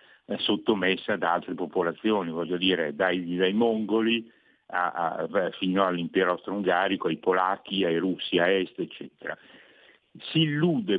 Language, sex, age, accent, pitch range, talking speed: Italian, male, 60-79, native, 95-120 Hz, 125 wpm